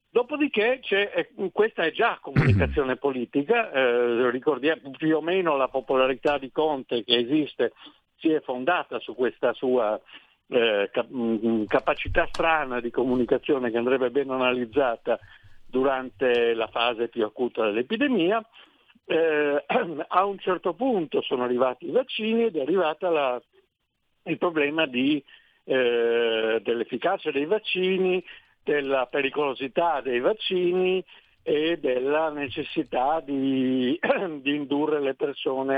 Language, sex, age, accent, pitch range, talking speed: Italian, male, 60-79, native, 130-185 Hz, 115 wpm